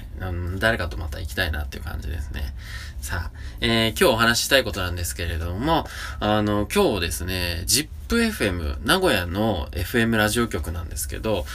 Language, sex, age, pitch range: Japanese, male, 20-39, 80-105 Hz